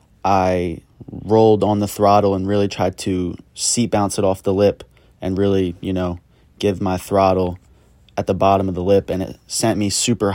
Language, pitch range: English, 95-100 Hz